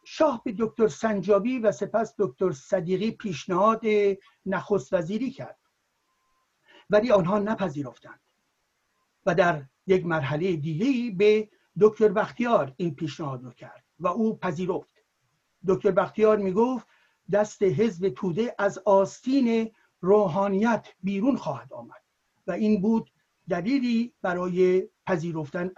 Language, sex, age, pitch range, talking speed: Persian, male, 60-79, 175-220 Hz, 110 wpm